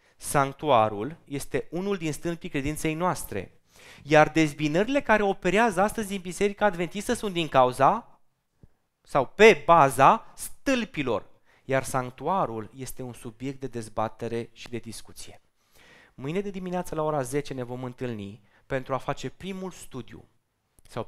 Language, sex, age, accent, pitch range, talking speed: Romanian, male, 20-39, native, 115-160 Hz, 135 wpm